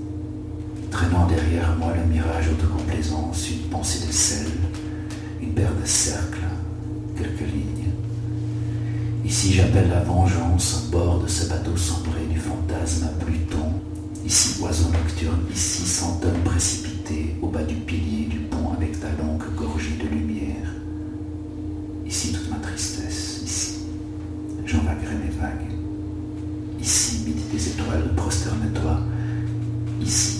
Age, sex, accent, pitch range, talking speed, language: 60-79, male, French, 85-100 Hz, 120 wpm, French